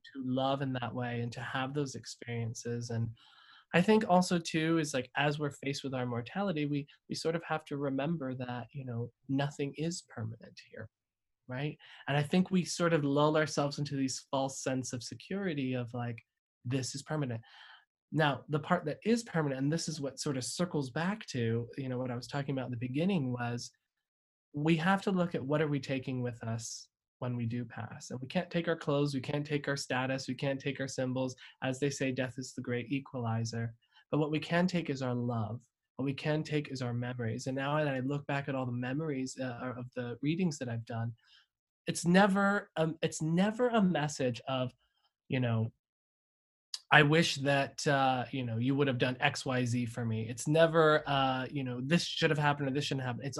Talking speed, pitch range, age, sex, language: 215 wpm, 125-150 Hz, 20-39, male, English